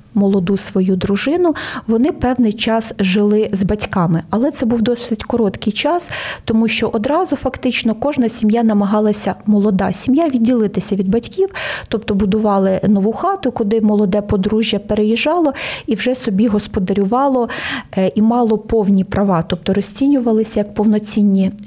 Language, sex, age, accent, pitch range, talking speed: Ukrainian, female, 20-39, native, 200-235 Hz, 130 wpm